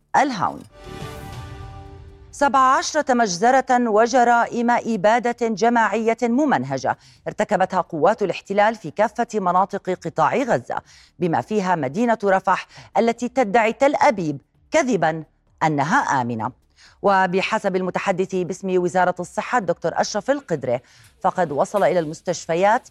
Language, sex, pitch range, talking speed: Arabic, female, 165-230 Hz, 100 wpm